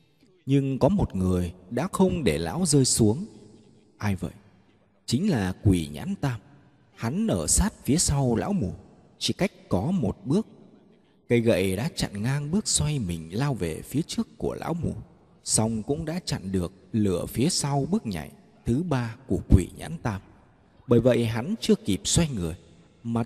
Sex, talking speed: male, 175 wpm